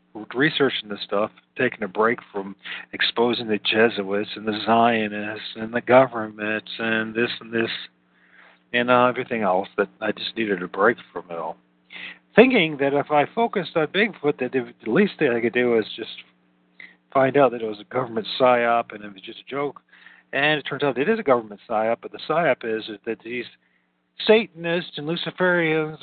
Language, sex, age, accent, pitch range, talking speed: English, male, 50-69, American, 95-130 Hz, 185 wpm